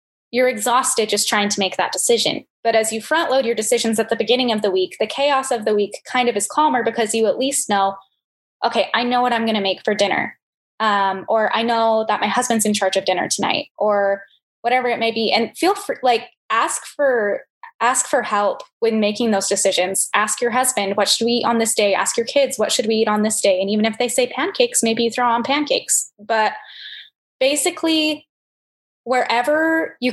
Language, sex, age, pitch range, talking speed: English, female, 10-29, 205-255 Hz, 215 wpm